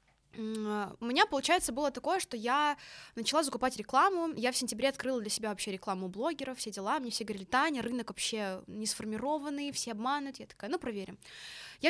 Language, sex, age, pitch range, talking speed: Russian, female, 20-39, 215-285 Hz, 185 wpm